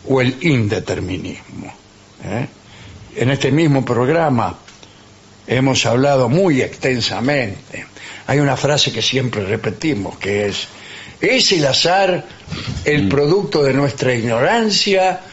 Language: English